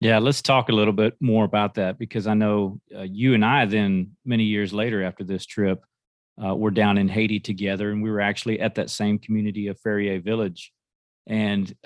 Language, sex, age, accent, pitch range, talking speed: English, male, 40-59, American, 105-115 Hz, 205 wpm